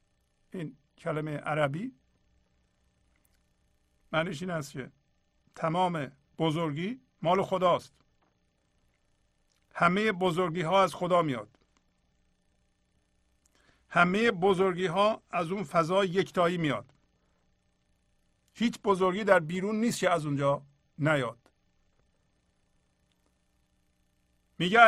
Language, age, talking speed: Persian, 50-69, 85 wpm